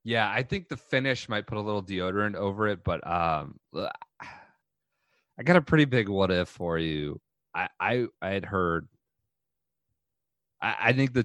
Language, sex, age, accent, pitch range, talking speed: English, male, 30-49, American, 80-105 Hz, 165 wpm